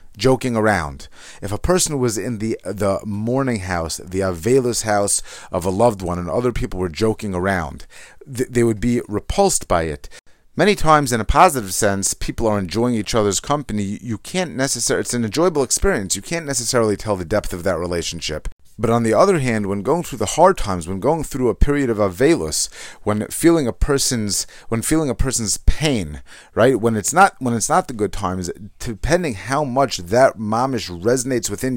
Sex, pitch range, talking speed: male, 100-130 Hz, 195 wpm